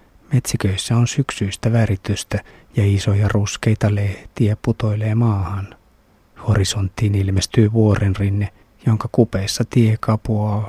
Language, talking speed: Finnish, 95 wpm